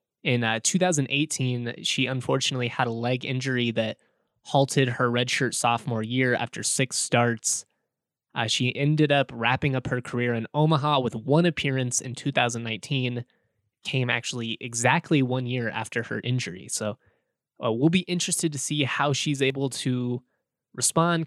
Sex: male